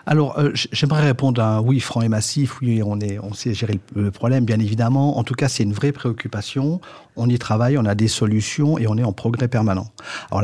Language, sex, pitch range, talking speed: French, male, 110-135 Hz, 240 wpm